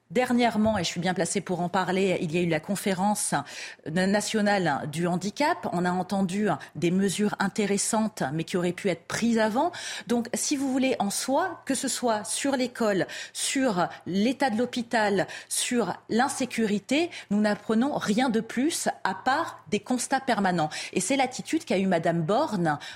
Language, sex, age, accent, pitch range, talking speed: French, female, 30-49, French, 185-255 Hz, 170 wpm